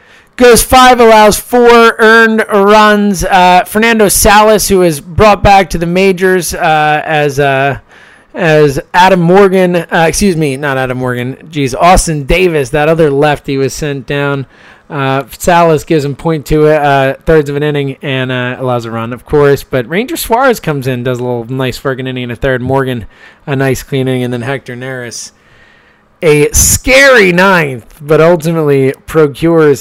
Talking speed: 165 wpm